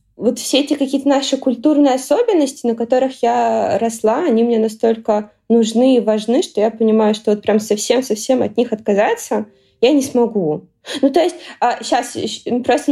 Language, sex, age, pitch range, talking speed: Russian, female, 20-39, 220-265 Hz, 165 wpm